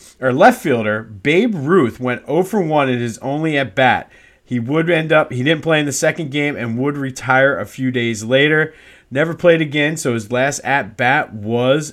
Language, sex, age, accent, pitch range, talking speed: English, male, 30-49, American, 120-145 Hz, 205 wpm